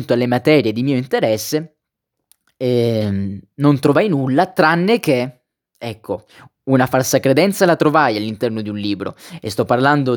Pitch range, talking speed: 125-155 Hz, 140 wpm